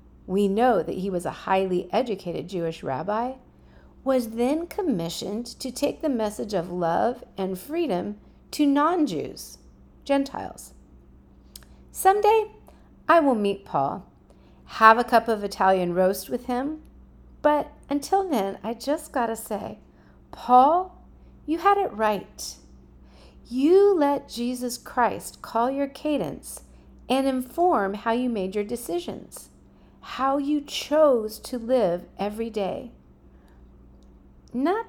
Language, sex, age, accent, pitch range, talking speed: English, female, 40-59, American, 185-285 Hz, 125 wpm